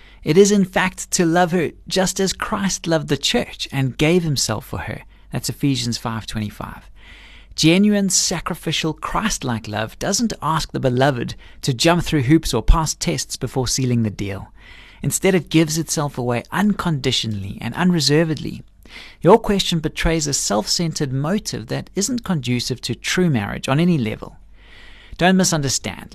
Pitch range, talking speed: 125-175 Hz, 150 wpm